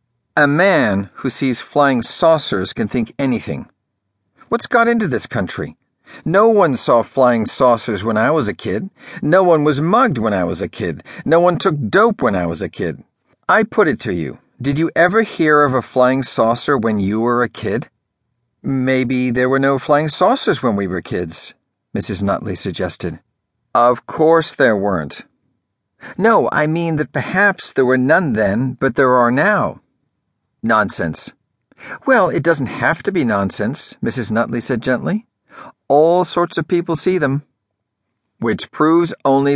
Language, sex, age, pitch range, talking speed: English, male, 50-69, 110-160 Hz, 170 wpm